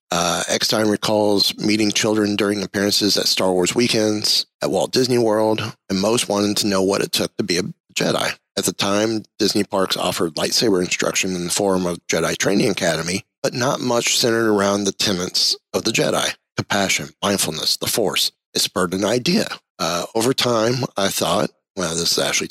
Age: 30-49